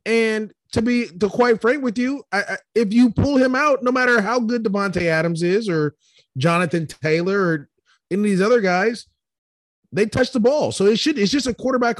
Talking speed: 210 wpm